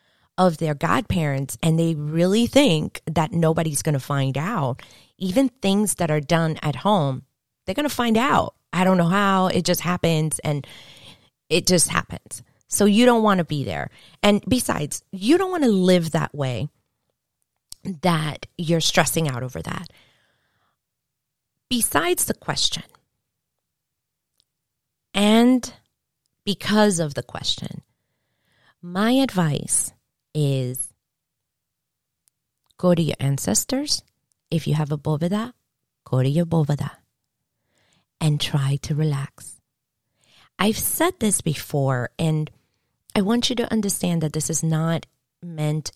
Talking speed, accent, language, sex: 125 wpm, American, English, female